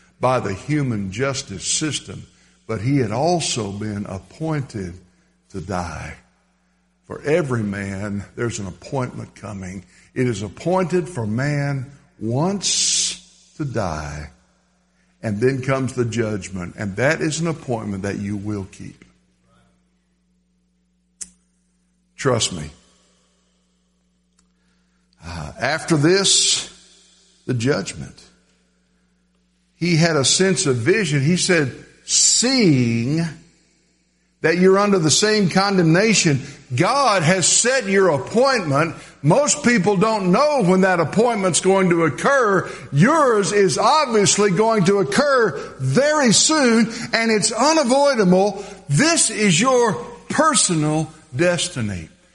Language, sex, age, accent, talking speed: English, male, 60-79, American, 110 wpm